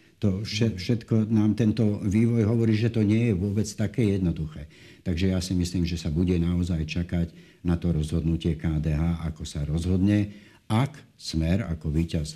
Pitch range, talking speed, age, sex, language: 80-95 Hz, 165 wpm, 60-79, male, Slovak